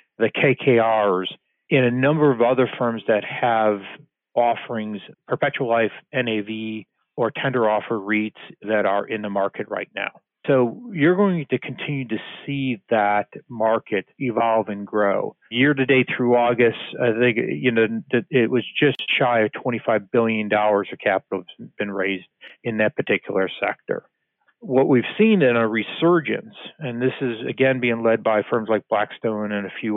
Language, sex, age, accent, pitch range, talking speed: English, male, 40-59, American, 110-130 Hz, 160 wpm